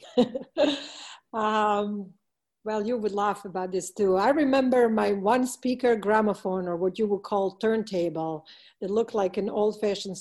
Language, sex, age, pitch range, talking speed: English, female, 50-69, 180-220 Hz, 145 wpm